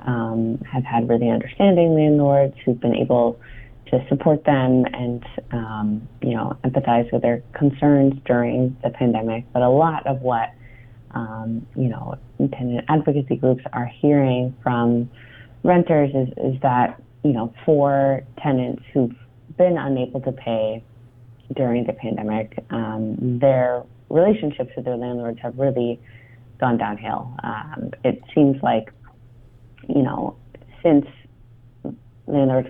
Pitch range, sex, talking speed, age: 120-135 Hz, female, 130 wpm, 30-49